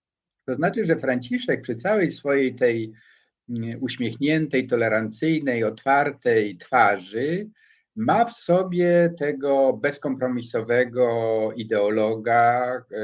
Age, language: 50-69, Polish